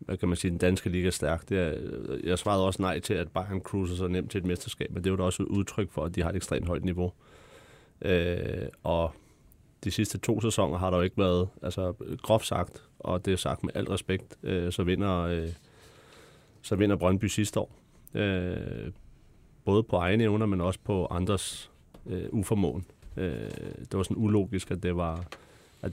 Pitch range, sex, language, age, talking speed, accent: 90-100 Hz, male, Danish, 30-49, 200 wpm, native